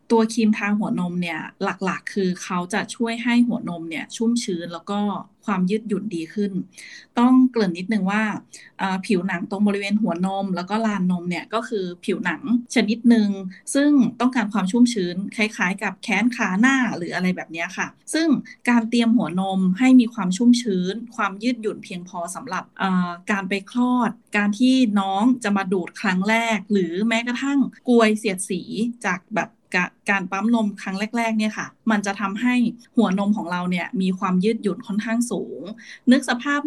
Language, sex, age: Thai, female, 20-39